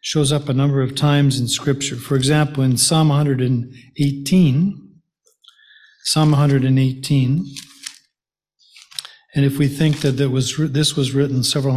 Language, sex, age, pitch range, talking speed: English, male, 50-69, 130-150 Hz, 125 wpm